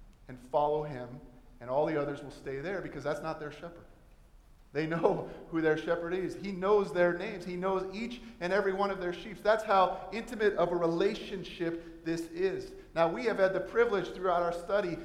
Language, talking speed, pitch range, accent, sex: English, 205 wpm, 155-200 Hz, American, male